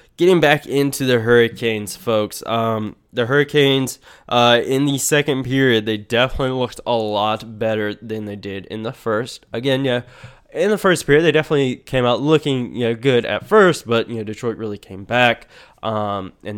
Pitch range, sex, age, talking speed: 110-130 Hz, male, 20-39, 185 wpm